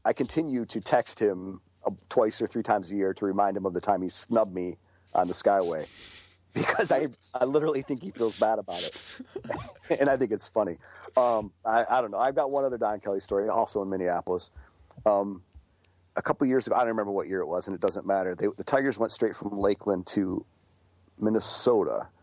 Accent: American